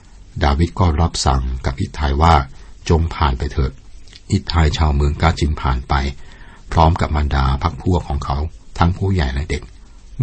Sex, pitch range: male, 70-90 Hz